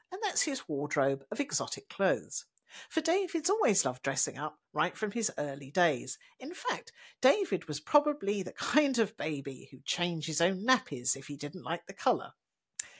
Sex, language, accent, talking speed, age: female, English, British, 175 wpm, 50-69